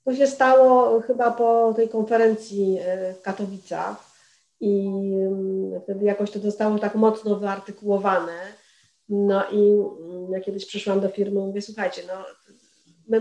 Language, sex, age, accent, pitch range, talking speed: Polish, female, 40-59, native, 185-215 Hz, 130 wpm